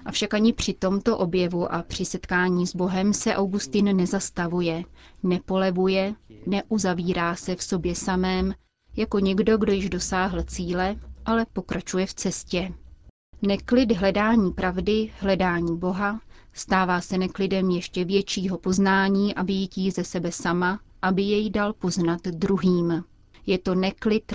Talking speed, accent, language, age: 130 wpm, native, Czech, 30-49